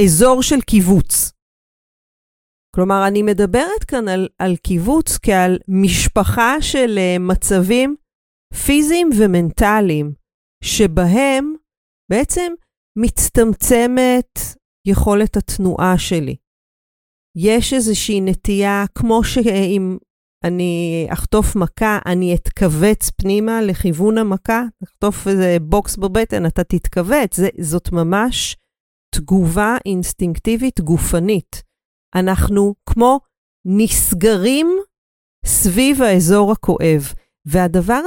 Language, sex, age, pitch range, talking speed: Hebrew, female, 40-59, 180-225 Hz, 85 wpm